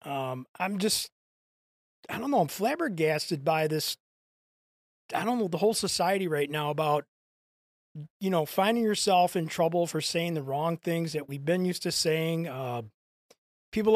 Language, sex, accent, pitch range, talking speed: English, male, American, 160-205 Hz, 165 wpm